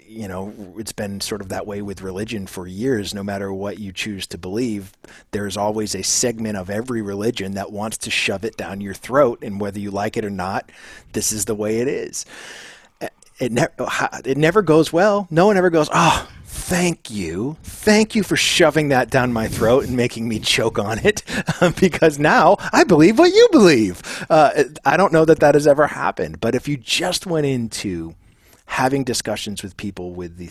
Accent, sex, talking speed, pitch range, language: American, male, 200 wpm, 95-130 Hz, English